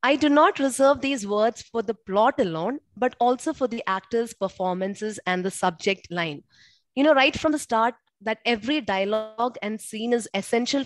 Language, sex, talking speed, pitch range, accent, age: English, female, 180 wpm, 205-260 Hz, Indian, 20-39